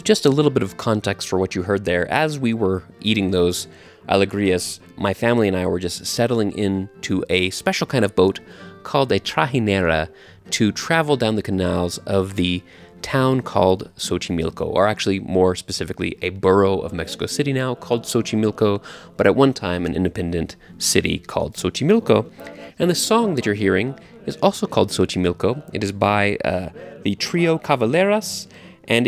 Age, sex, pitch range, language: 30-49, male, 95-130 Hz, English